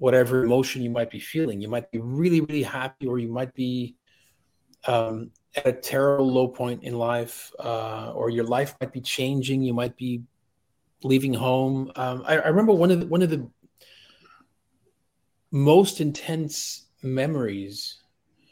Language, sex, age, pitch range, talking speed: English, male, 40-59, 115-140 Hz, 150 wpm